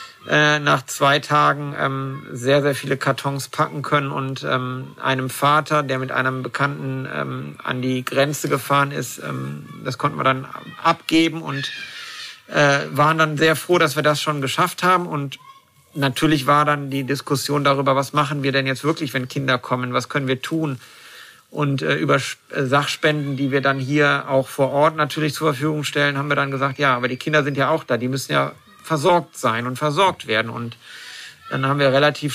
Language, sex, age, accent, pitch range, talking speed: German, male, 50-69, German, 130-150 Hz, 180 wpm